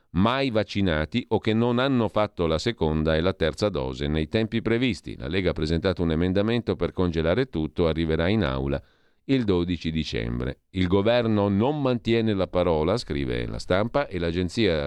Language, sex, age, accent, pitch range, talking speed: Italian, male, 40-59, native, 80-110 Hz, 170 wpm